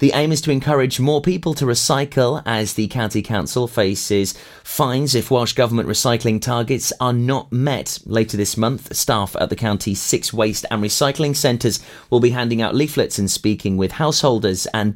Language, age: English, 30-49